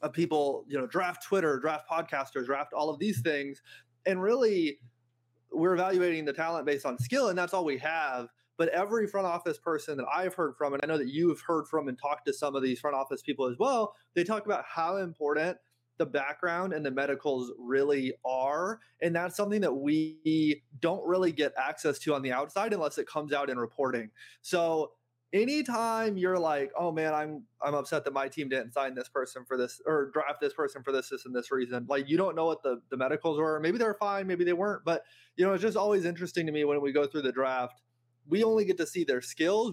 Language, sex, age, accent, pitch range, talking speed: English, male, 30-49, American, 135-175 Hz, 230 wpm